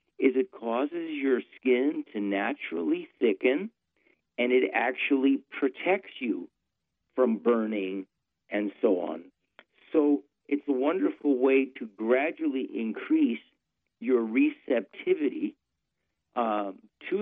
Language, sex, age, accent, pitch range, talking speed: English, male, 50-69, American, 110-145 Hz, 105 wpm